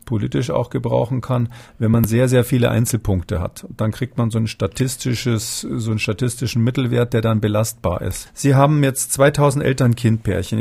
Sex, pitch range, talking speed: male, 110-130 Hz, 175 wpm